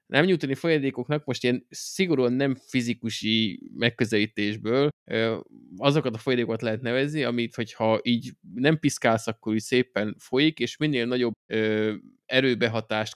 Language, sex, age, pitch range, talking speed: Hungarian, male, 20-39, 110-140 Hz, 125 wpm